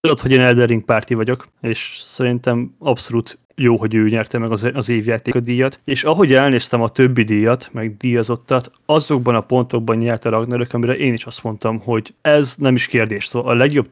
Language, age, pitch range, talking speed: Hungarian, 30-49, 115-130 Hz, 190 wpm